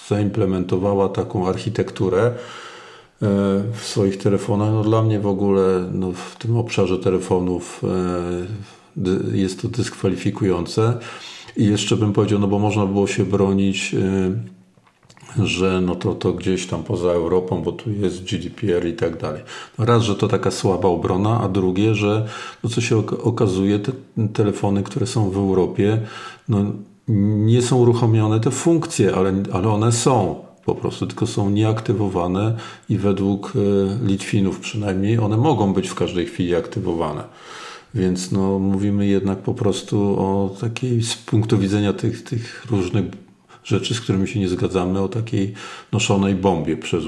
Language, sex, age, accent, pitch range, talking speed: Polish, male, 50-69, native, 95-115 Hz, 140 wpm